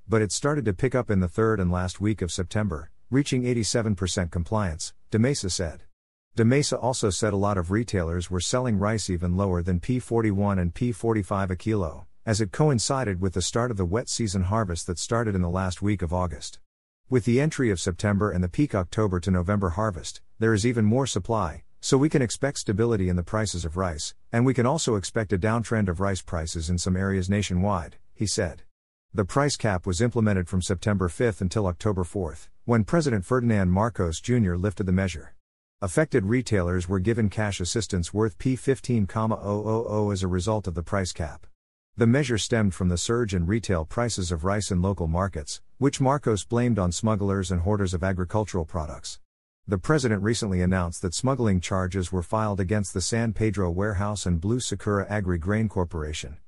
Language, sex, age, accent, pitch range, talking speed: English, male, 50-69, American, 90-115 Hz, 190 wpm